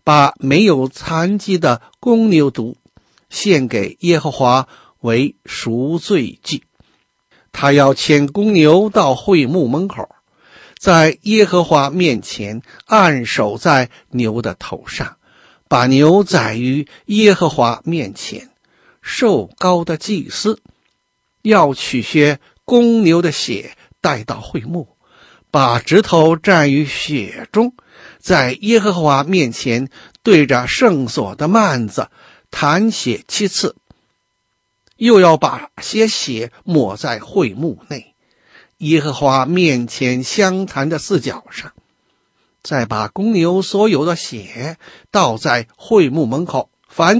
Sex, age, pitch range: male, 60-79, 135-195 Hz